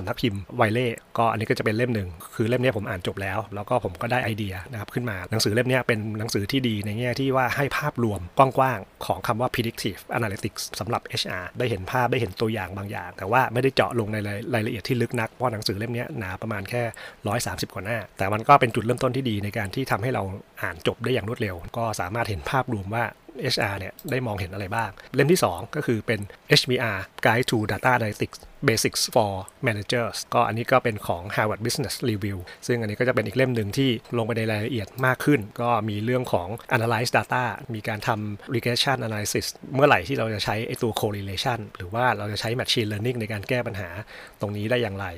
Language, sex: Thai, male